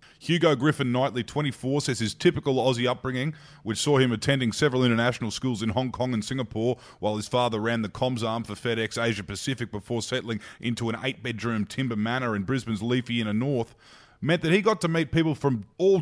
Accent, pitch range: Australian, 110-135 Hz